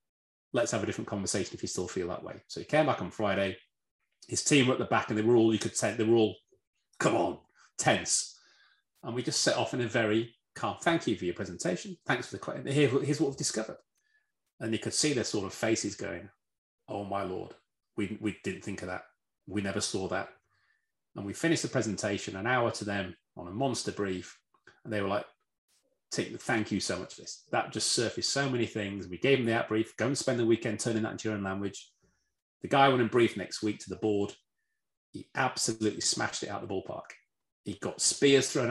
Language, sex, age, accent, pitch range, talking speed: English, male, 30-49, British, 100-135 Hz, 230 wpm